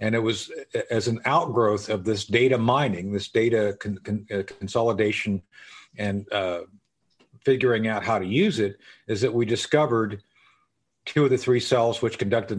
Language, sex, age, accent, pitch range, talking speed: English, male, 50-69, American, 110-140 Hz, 155 wpm